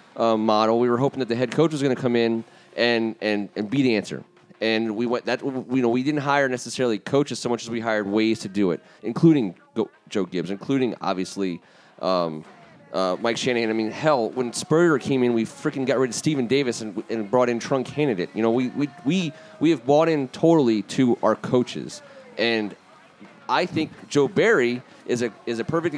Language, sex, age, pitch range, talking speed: English, male, 30-49, 115-140 Hz, 215 wpm